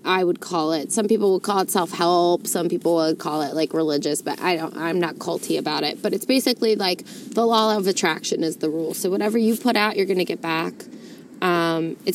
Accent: American